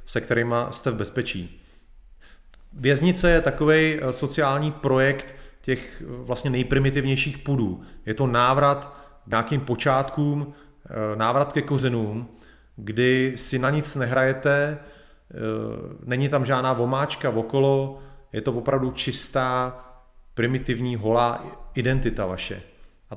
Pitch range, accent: 115-135 Hz, native